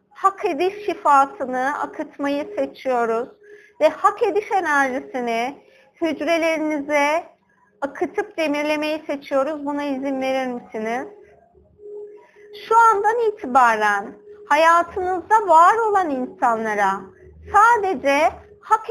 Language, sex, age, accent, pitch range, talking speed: Turkish, female, 50-69, native, 255-360 Hz, 85 wpm